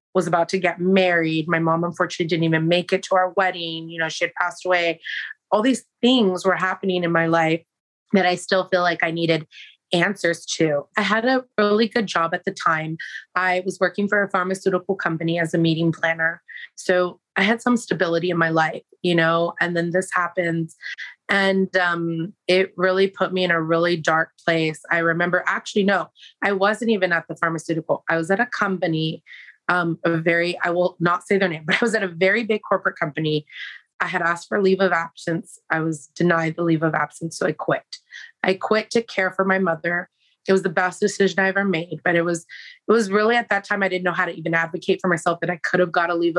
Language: English